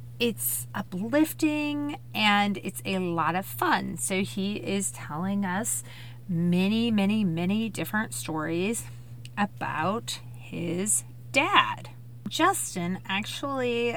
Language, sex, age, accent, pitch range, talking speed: English, female, 30-49, American, 125-205 Hz, 100 wpm